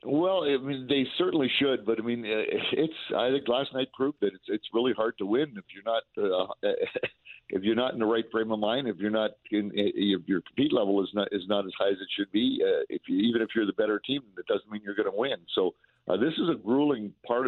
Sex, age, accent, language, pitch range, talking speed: male, 50-69, American, English, 100-115 Hz, 245 wpm